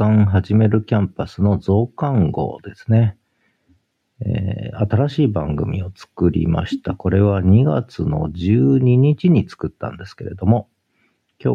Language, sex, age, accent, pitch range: Japanese, male, 50-69, native, 95-115 Hz